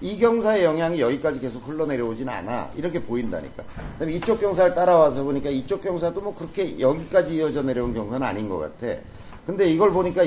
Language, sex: Korean, male